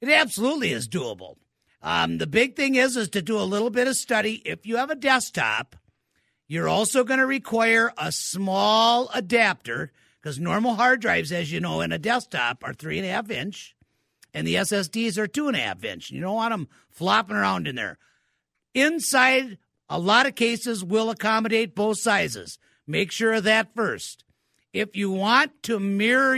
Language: English